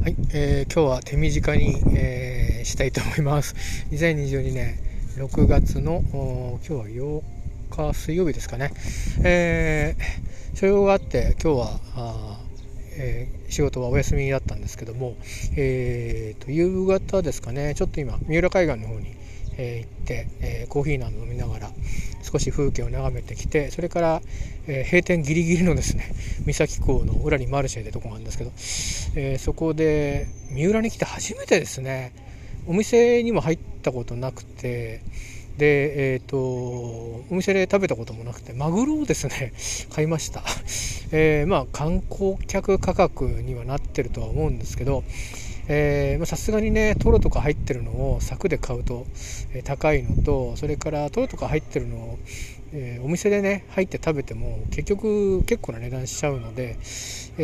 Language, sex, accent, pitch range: Japanese, male, native, 115-150 Hz